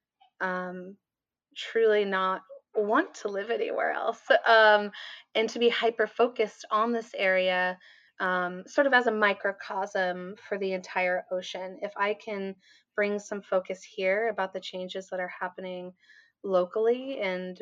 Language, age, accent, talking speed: English, 20-39, American, 145 wpm